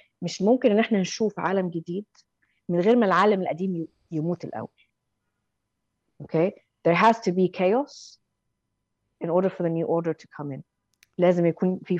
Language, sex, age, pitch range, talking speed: Arabic, female, 20-39, 170-230 Hz, 160 wpm